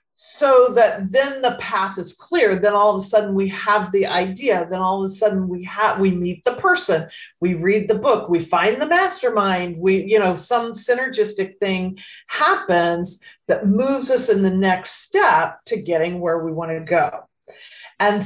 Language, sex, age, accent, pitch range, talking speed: English, female, 40-59, American, 185-225 Hz, 185 wpm